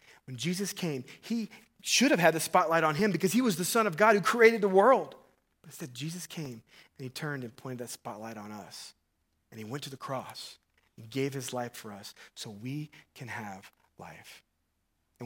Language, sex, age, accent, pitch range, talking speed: English, male, 30-49, American, 125-170 Hz, 210 wpm